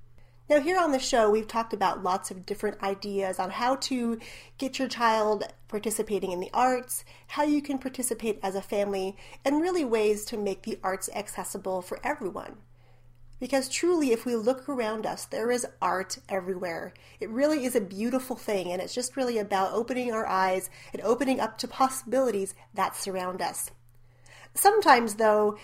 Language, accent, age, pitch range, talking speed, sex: English, American, 30-49, 195-255 Hz, 175 wpm, female